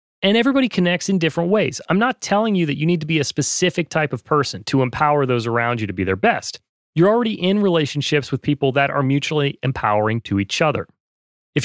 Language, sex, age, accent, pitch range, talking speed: English, male, 30-49, American, 140-180 Hz, 220 wpm